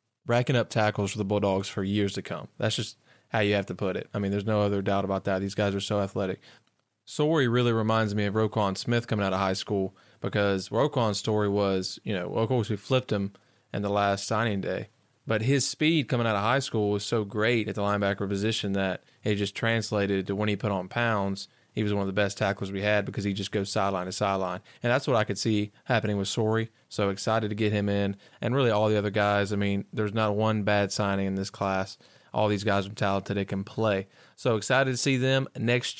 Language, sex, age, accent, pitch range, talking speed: English, male, 20-39, American, 100-120 Hz, 245 wpm